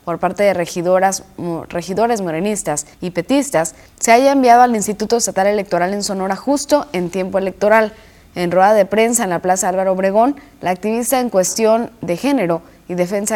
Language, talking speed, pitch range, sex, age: Spanish, 170 wpm, 170-210 Hz, female, 20-39